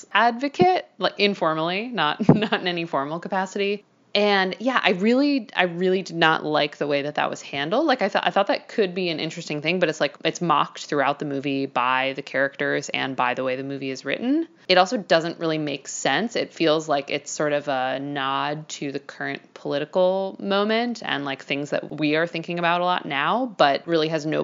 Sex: female